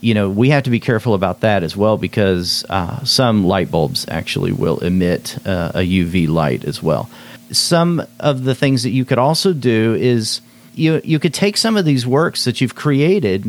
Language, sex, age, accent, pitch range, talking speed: English, male, 40-59, American, 105-130 Hz, 205 wpm